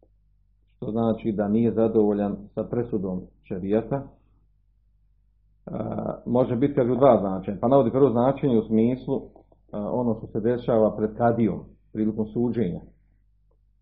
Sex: male